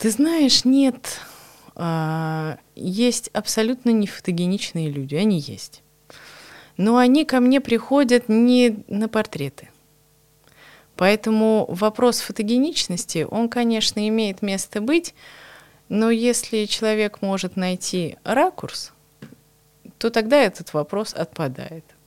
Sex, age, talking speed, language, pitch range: female, 20-39, 100 wpm, Russian, 160-225 Hz